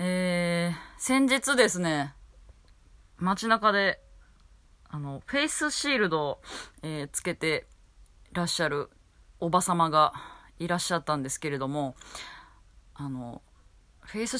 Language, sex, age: Japanese, female, 20-39